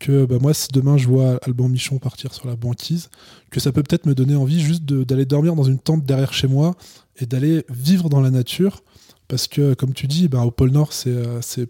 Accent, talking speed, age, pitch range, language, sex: French, 240 wpm, 20-39, 120-140 Hz, French, male